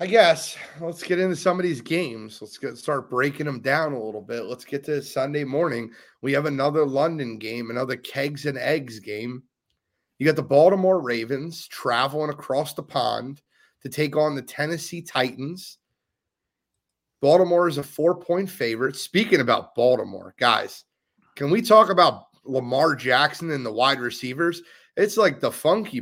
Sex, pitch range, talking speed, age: male, 130-175 Hz, 165 wpm, 30-49